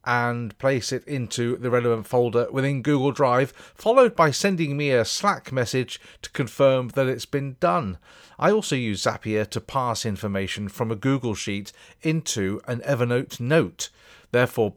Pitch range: 110-140 Hz